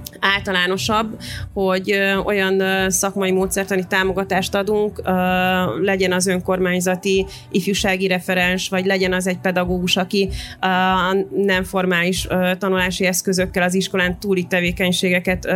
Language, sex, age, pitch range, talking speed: Hungarian, female, 30-49, 185-200 Hz, 100 wpm